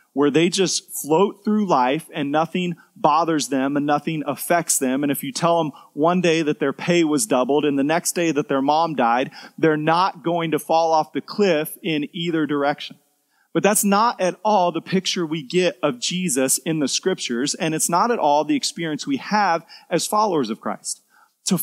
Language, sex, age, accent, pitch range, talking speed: English, male, 30-49, American, 145-190 Hz, 205 wpm